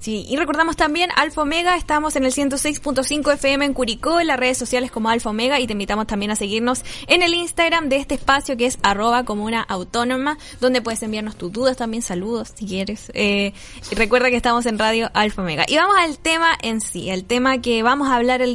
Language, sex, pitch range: Spanish, female, 225-280 Hz